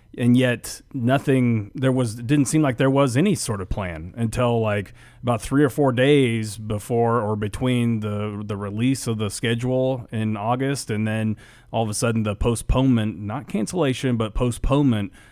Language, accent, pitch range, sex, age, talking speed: English, American, 105-125 Hz, male, 30-49, 170 wpm